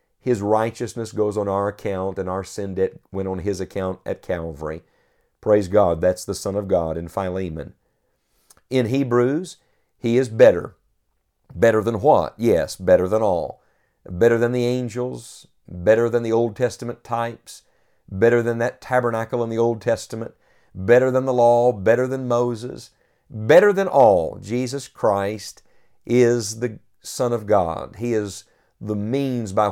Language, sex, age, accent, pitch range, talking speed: English, male, 50-69, American, 95-120 Hz, 155 wpm